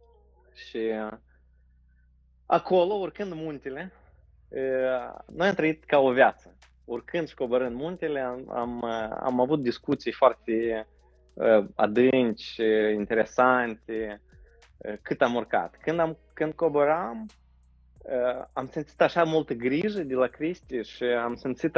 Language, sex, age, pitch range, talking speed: Romanian, male, 20-39, 100-150 Hz, 110 wpm